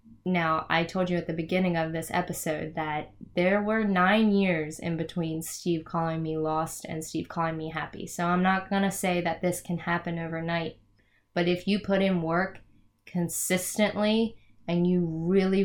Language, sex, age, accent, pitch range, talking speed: English, female, 10-29, American, 160-185 Hz, 180 wpm